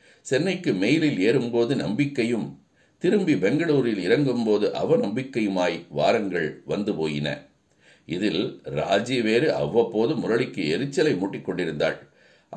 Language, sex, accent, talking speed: Tamil, male, native, 90 wpm